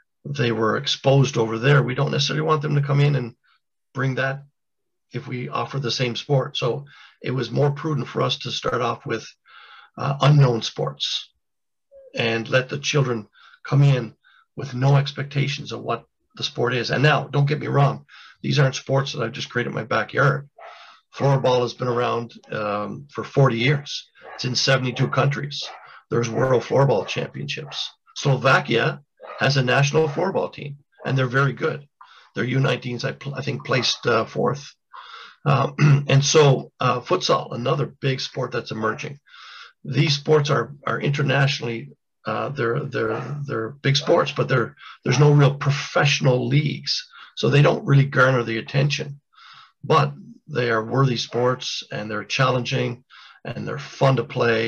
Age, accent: 50-69, American